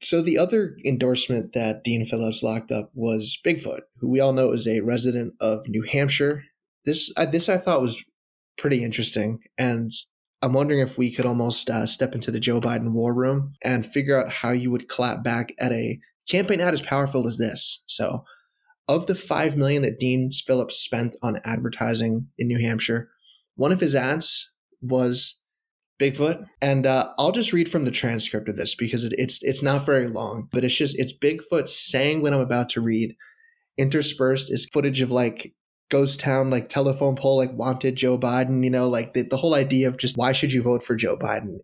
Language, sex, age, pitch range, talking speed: English, male, 20-39, 120-140 Hz, 200 wpm